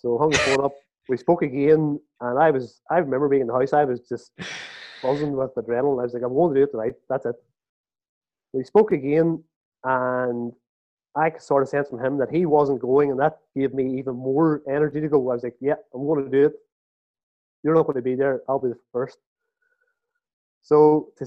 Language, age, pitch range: English, 20-39, 125-160 Hz